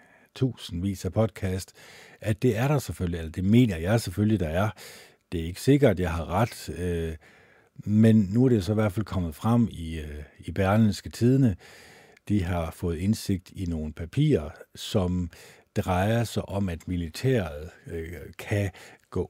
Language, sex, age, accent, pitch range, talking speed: Danish, male, 50-69, native, 90-115 Hz, 170 wpm